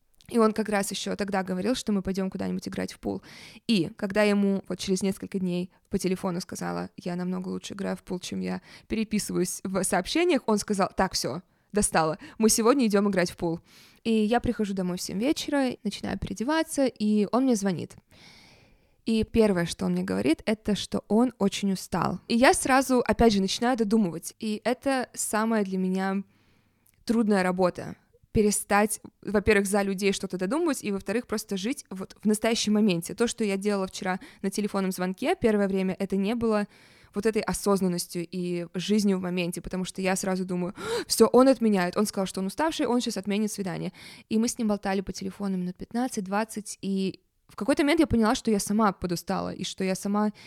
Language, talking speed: Russian, 190 wpm